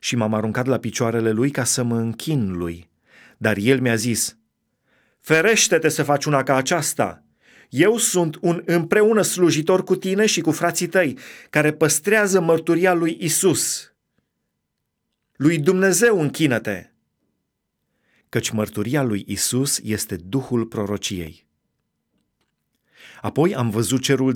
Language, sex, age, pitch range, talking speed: Romanian, male, 30-49, 115-155 Hz, 125 wpm